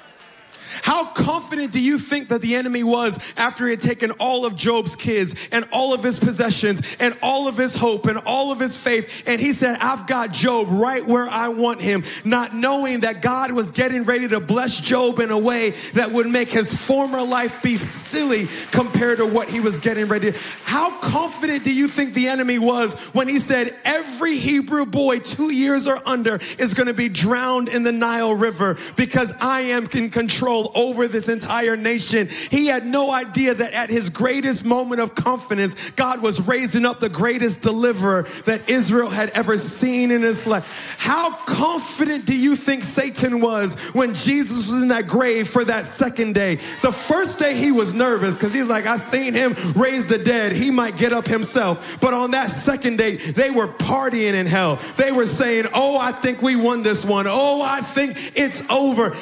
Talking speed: 200 wpm